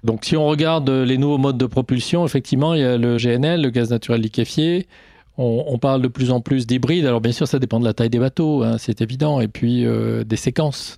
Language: French